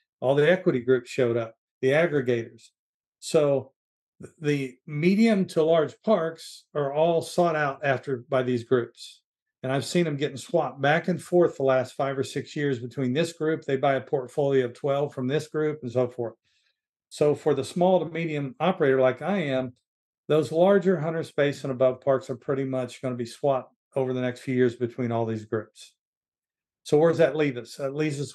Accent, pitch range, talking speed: American, 125-155 Hz, 200 wpm